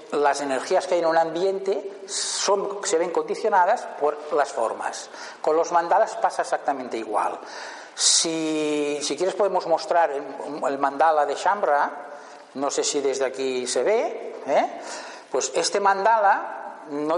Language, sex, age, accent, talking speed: Spanish, male, 60-79, Spanish, 145 wpm